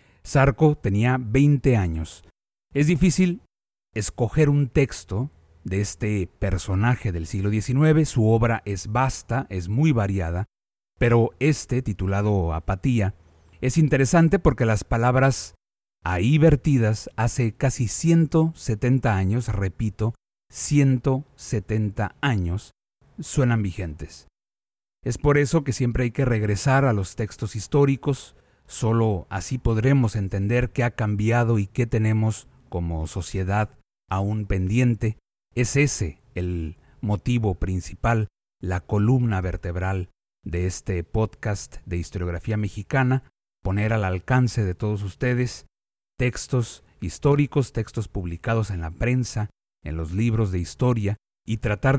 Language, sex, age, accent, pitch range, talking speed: Spanish, male, 40-59, Mexican, 95-125 Hz, 120 wpm